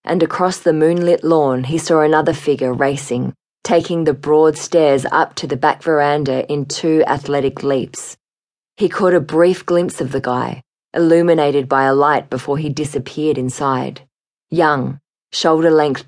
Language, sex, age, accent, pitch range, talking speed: English, female, 20-39, Australian, 140-165 Hz, 155 wpm